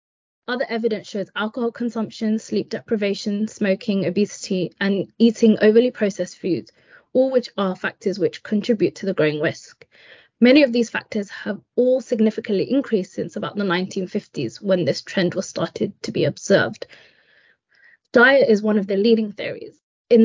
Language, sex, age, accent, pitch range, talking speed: English, female, 20-39, British, 195-235 Hz, 155 wpm